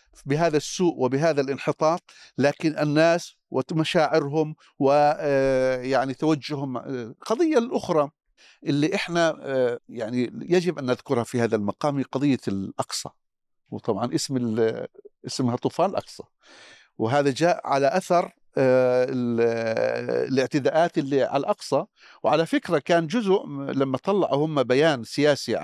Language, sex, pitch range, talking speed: Arabic, male, 130-175 Hz, 105 wpm